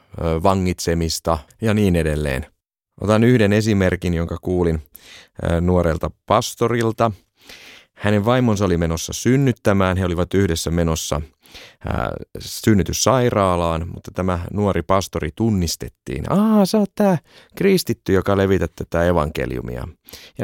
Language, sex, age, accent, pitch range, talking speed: Finnish, male, 30-49, native, 85-115 Hz, 105 wpm